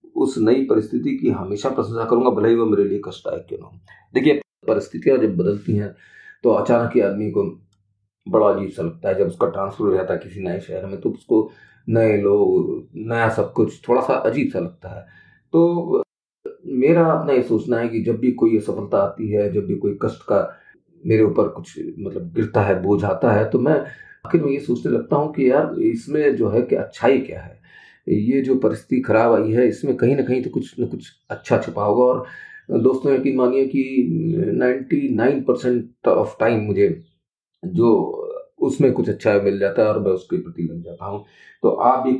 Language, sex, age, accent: Hindi, male, 40-59, native